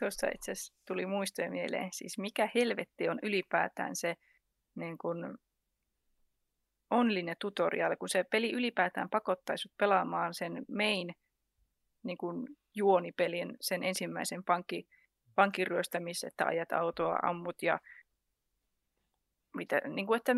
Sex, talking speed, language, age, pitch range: female, 105 wpm, Finnish, 30-49, 185-230 Hz